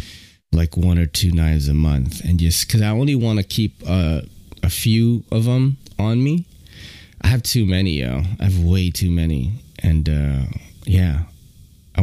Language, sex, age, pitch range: English, male, 30-49, 85-110 Hz